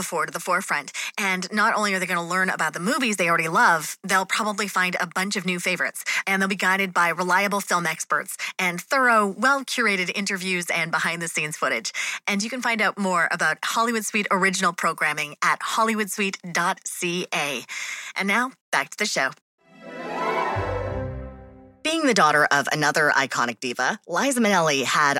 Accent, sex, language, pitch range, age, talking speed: American, female, English, 165-225 Hz, 30-49, 170 wpm